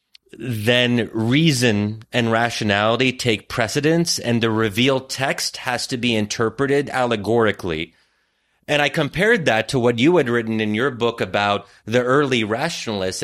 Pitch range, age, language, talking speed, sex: 105-125 Hz, 30-49, English, 140 wpm, male